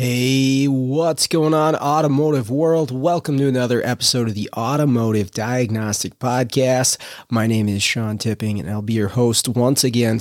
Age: 30-49